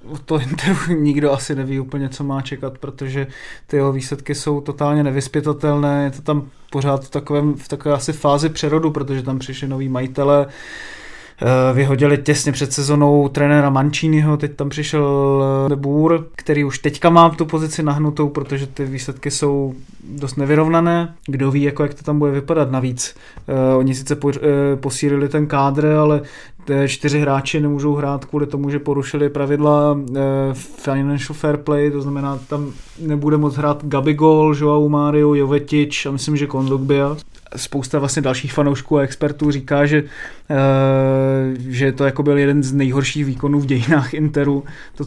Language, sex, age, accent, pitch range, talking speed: Czech, male, 20-39, native, 140-155 Hz, 160 wpm